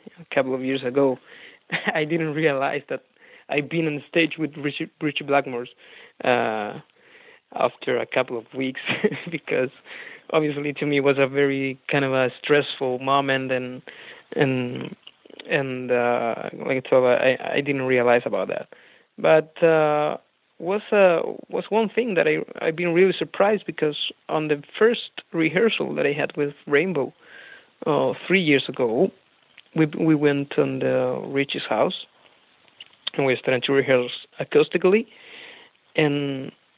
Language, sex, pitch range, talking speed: English, male, 130-160 Hz, 150 wpm